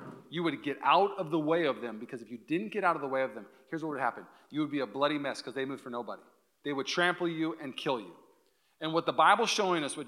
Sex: male